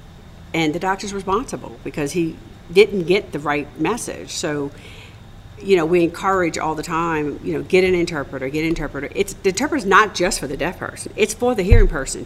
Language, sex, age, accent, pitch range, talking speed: English, female, 50-69, American, 140-175 Hz, 200 wpm